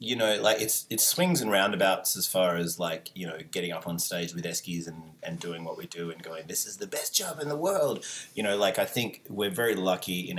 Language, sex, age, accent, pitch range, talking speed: English, male, 30-49, Australian, 85-95 Hz, 260 wpm